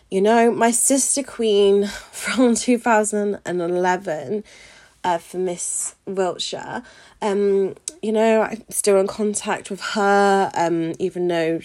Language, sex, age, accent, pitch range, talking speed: English, female, 20-39, British, 175-225 Hz, 135 wpm